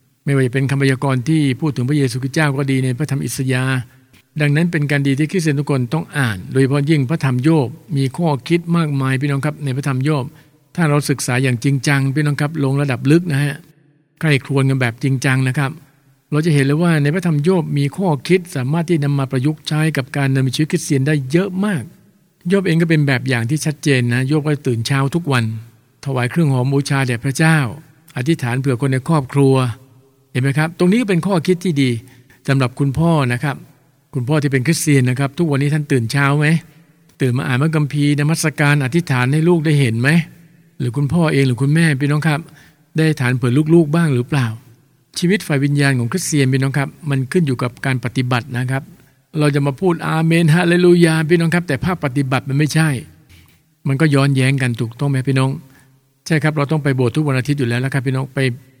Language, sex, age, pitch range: English, male, 60-79, 135-155 Hz